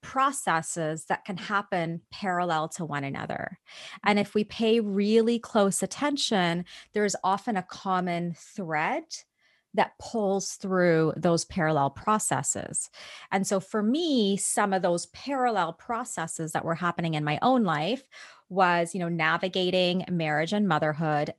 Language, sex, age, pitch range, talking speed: English, female, 30-49, 175-230 Hz, 140 wpm